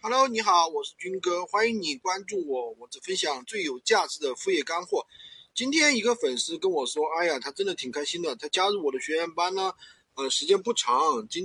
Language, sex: Chinese, male